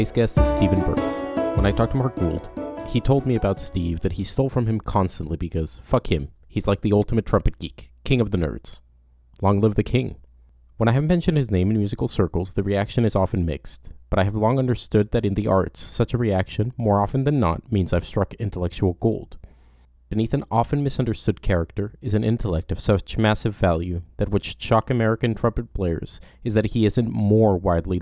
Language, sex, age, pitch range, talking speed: English, male, 30-49, 90-115 Hz, 210 wpm